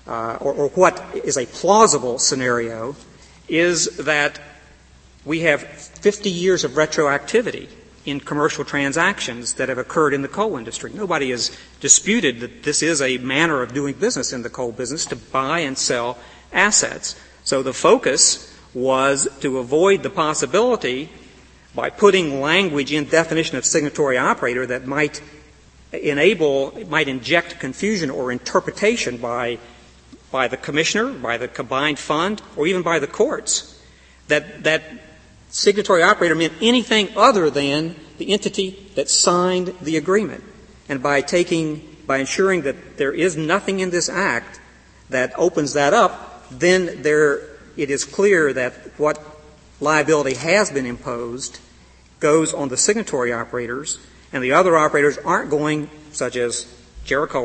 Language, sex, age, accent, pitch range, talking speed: English, male, 50-69, American, 130-170 Hz, 145 wpm